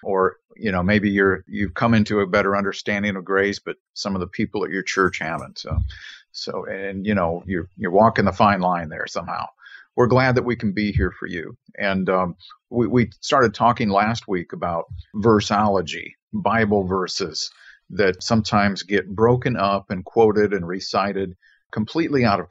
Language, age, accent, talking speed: English, 50-69, American, 180 wpm